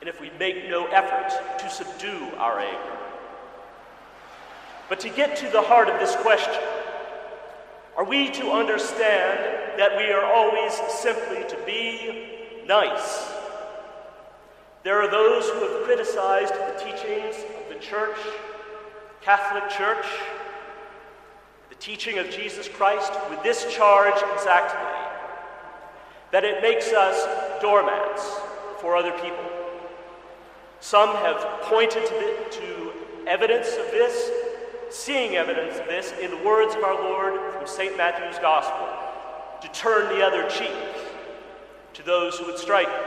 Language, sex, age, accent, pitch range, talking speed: English, male, 40-59, American, 195-250 Hz, 130 wpm